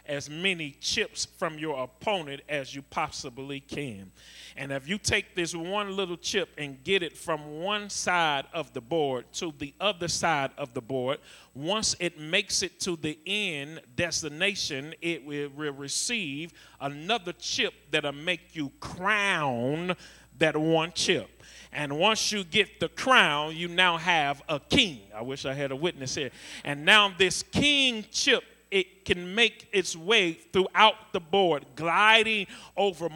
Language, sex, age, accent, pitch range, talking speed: English, male, 40-59, American, 160-205 Hz, 160 wpm